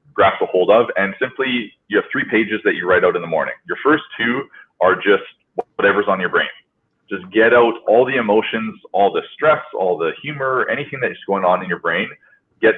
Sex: male